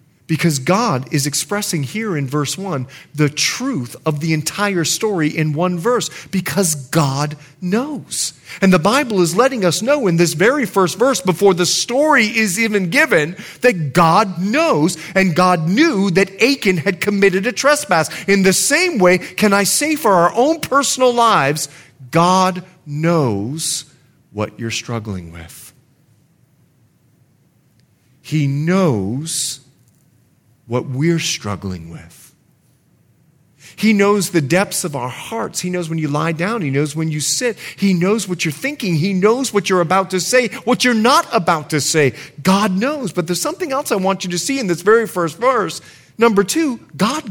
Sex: male